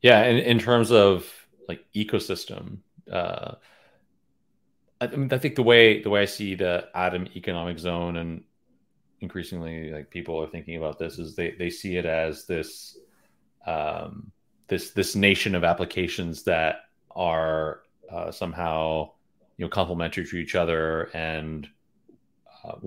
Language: English